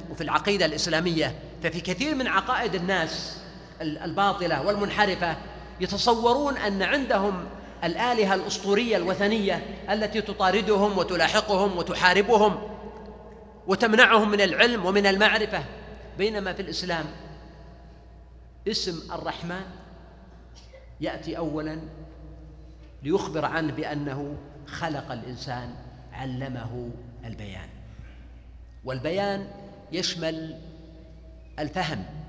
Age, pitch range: 40-59, 155-210 Hz